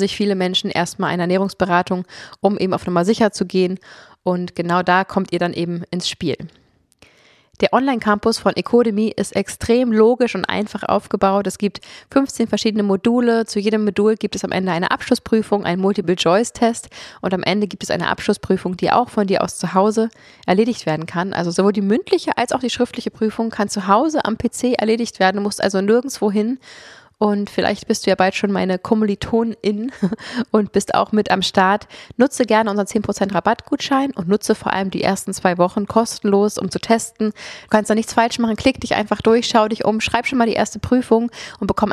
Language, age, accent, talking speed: German, 20-39, German, 200 wpm